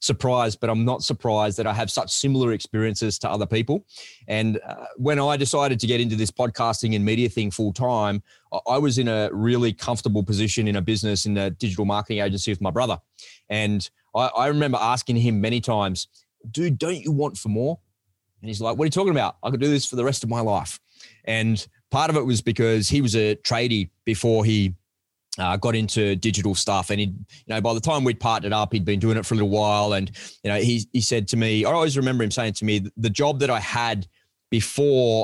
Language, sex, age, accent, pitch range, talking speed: English, male, 20-39, Australian, 105-120 Hz, 230 wpm